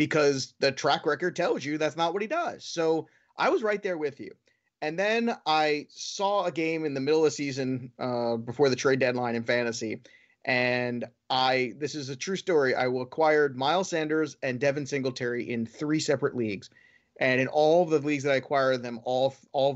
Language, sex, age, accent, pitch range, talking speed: English, male, 30-49, American, 125-155 Hz, 205 wpm